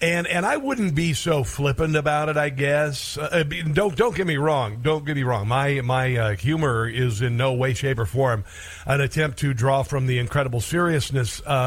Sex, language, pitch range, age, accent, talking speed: male, English, 125-150 Hz, 50-69, American, 205 wpm